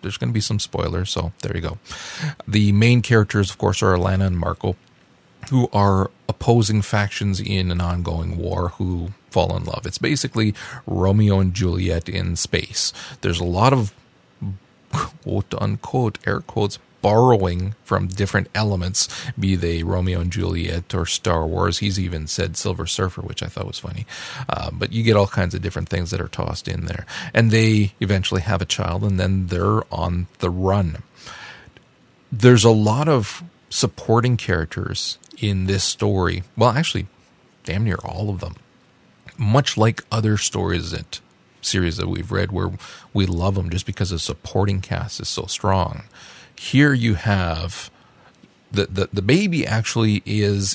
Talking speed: 165 wpm